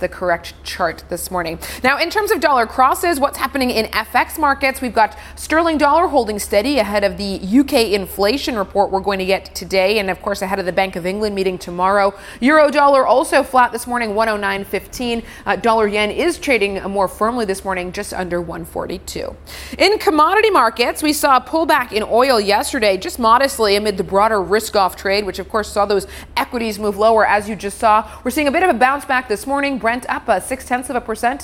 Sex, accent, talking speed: female, American, 210 wpm